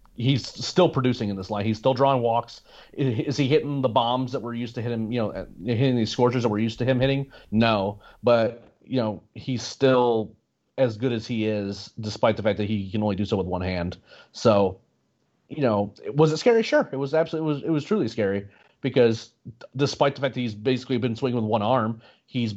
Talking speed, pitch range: 220 wpm, 110-135 Hz